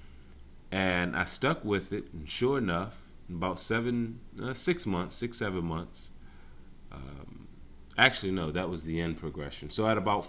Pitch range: 70-100 Hz